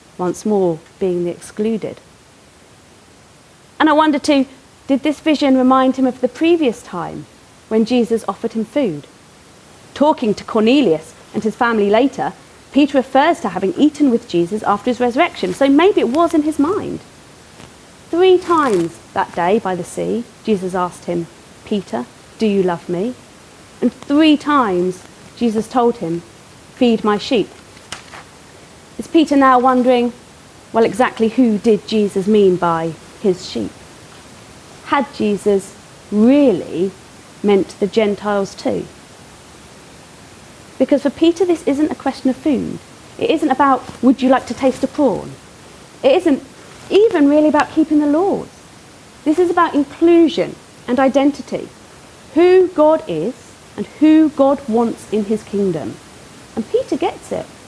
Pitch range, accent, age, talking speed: 205-290 Hz, British, 30-49, 145 wpm